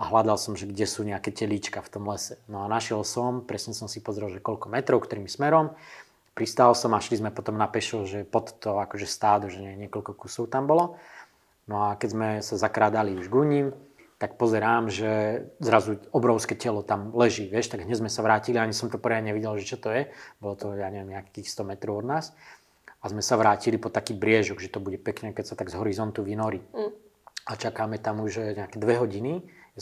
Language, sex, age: Slovak, male, 20-39